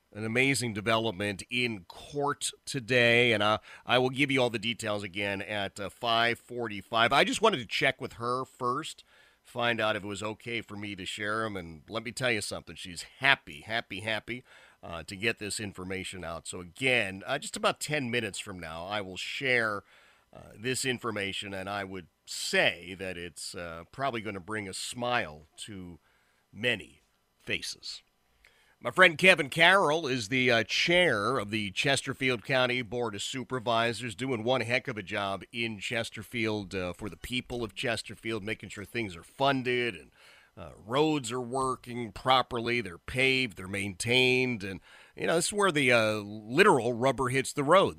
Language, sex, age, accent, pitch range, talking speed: English, male, 40-59, American, 100-125 Hz, 180 wpm